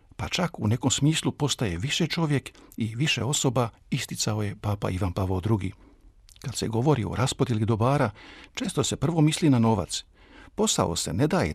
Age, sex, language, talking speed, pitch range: 50-69, male, Croatian, 170 wpm, 105-140 Hz